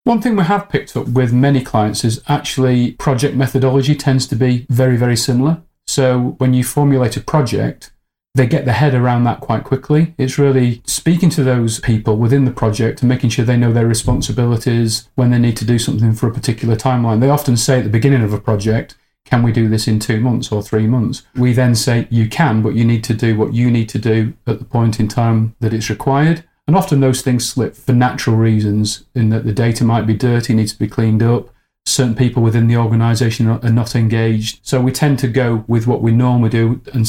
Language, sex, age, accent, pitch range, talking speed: English, male, 40-59, British, 115-130 Hz, 225 wpm